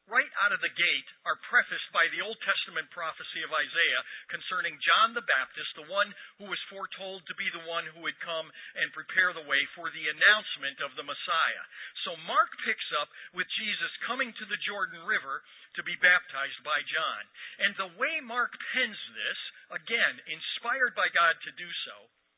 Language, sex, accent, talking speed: English, male, American, 185 wpm